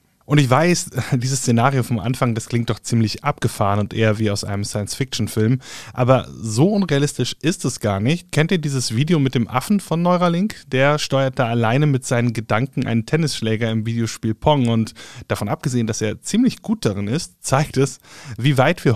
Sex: male